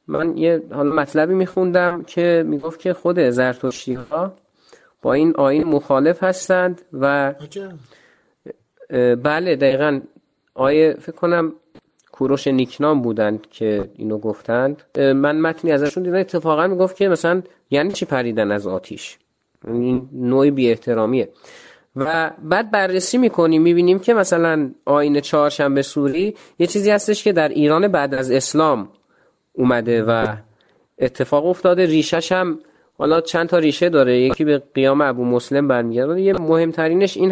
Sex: male